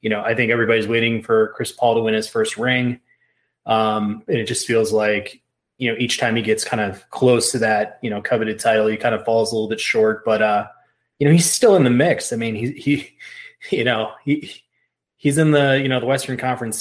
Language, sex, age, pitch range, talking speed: English, male, 20-39, 110-125 Hz, 240 wpm